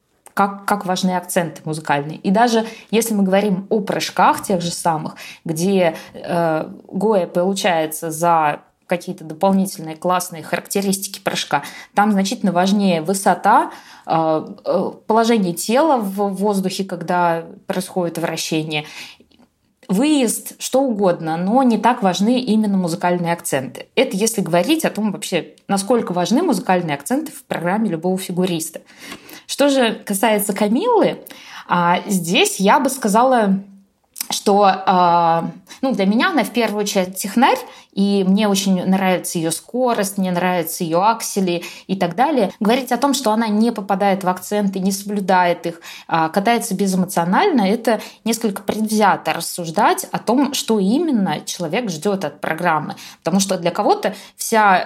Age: 20-39